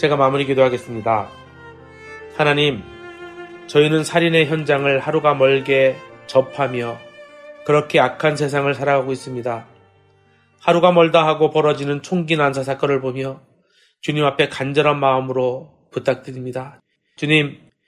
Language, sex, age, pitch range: Korean, male, 30-49, 135-160 Hz